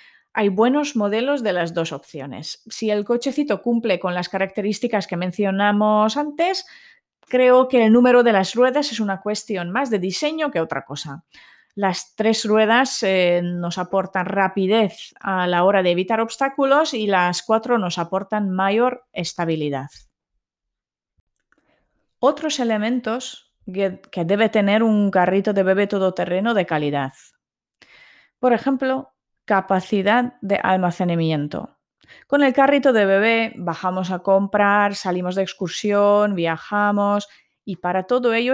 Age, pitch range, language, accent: 30-49, 185-230 Hz, Spanish, Spanish